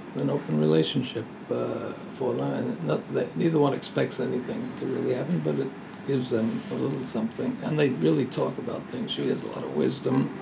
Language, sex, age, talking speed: English, male, 60-79, 190 wpm